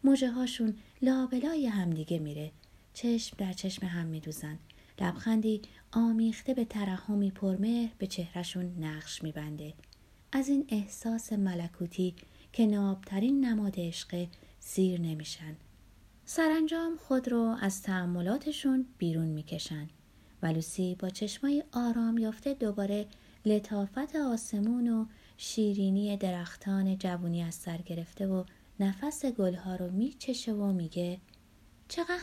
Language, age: Persian, 30-49